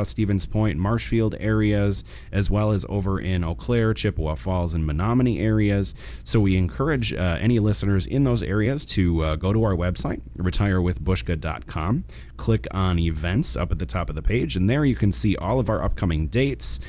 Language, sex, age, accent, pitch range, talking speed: English, male, 30-49, American, 85-115 Hz, 185 wpm